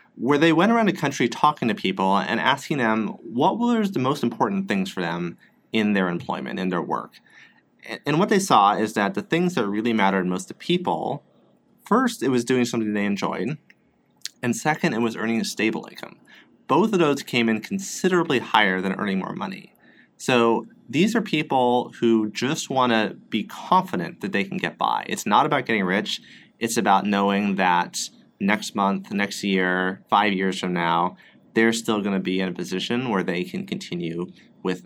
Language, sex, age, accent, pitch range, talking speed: English, male, 30-49, American, 95-145 Hz, 190 wpm